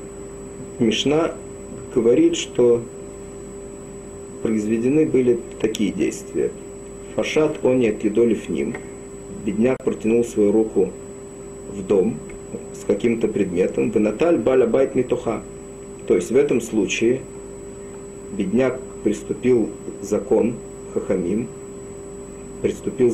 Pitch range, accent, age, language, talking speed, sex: 105-125 Hz, native, 40-59, Russian, 90 wpm, male